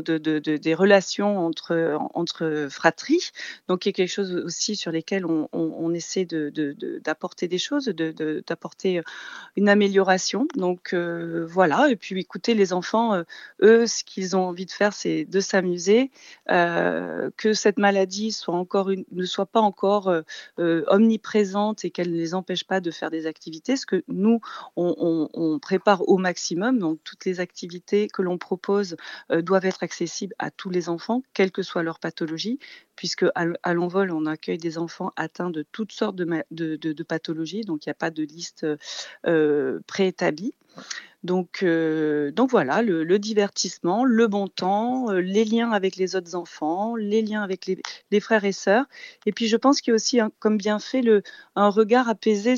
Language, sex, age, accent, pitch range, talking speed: French, female, 30-49, French, 175-220 Hz, 195 wpm